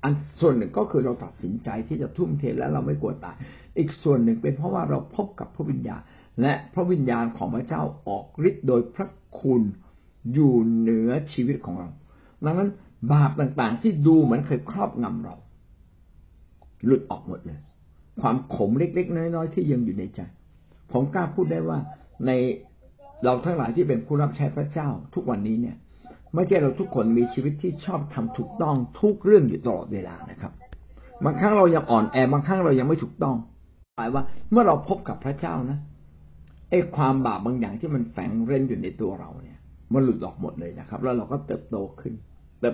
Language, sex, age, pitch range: Thai, male, 60-79, 110-160 Hz